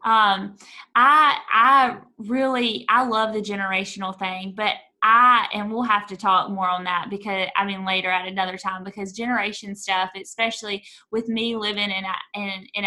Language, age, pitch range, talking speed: English, 20-39, 195-225 Hz, 175 wpm